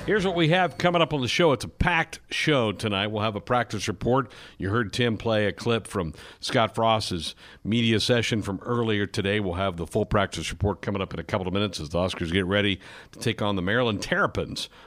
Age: 60-79